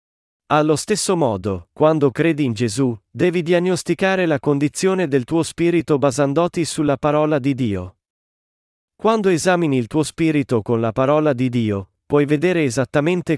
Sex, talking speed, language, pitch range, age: male, 145 wpm, Italian, 120-160 Hz, 40-59